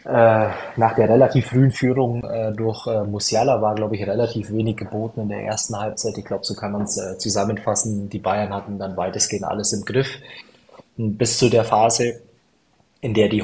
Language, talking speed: German, 190 wpm